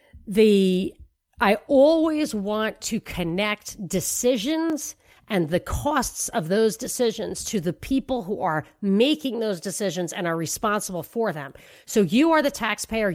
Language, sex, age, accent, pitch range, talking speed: English, female, 40-59, American, 185-250 Hz, 140 wpm